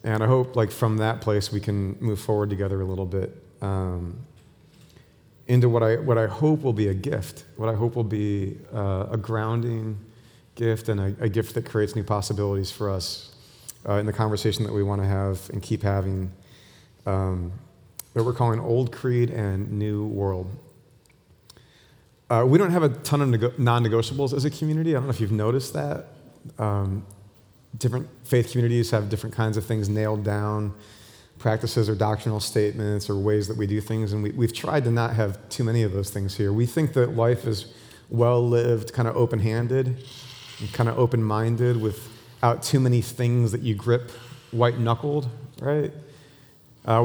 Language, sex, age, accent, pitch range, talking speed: English, male, 40-59, American, 105-120 Hz, 180 wpm